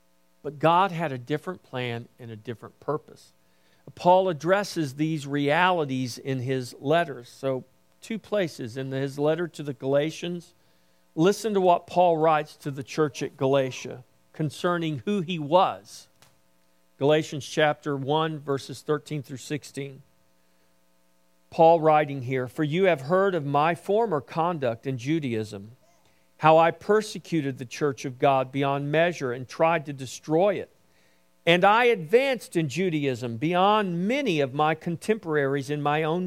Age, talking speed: 50-69, 145 wpm